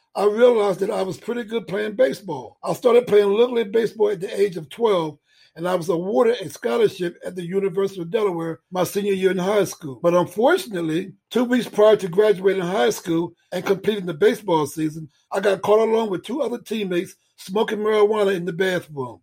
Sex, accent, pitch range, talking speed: male, American, 180-220 Hz, 200 wpm